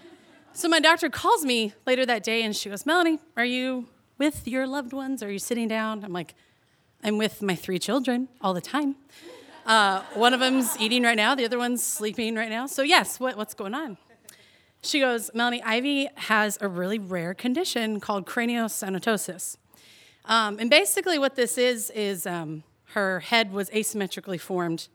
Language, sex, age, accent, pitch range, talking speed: English, female, 30-49, American, 200-270 Hz, 180 wpm